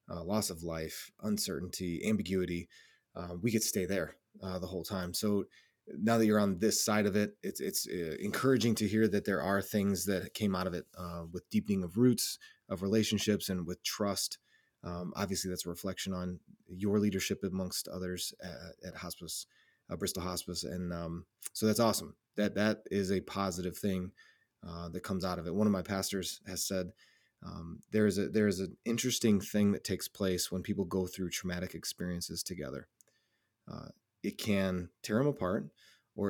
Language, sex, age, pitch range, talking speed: English, male, 30-49, 90-110 Hz, 185 wpm